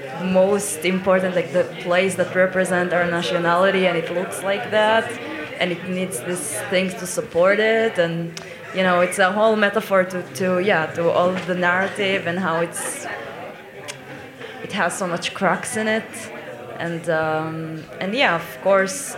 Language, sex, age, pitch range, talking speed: German, female, 20-39, 160-185 Hz, 165 wpm